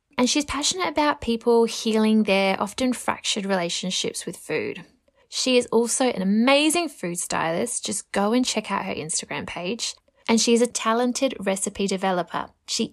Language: English